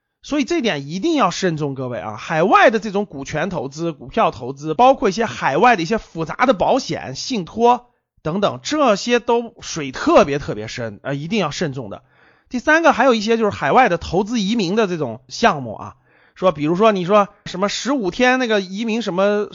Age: 30-49